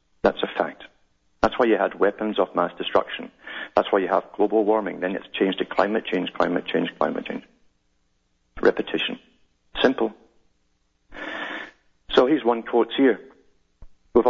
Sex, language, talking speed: male, English, 145 wpm